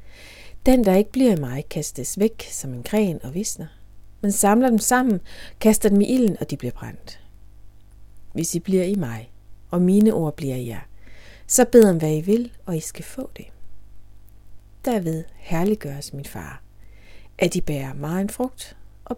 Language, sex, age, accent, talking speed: Danish, female, 60-79, native, 175 wpm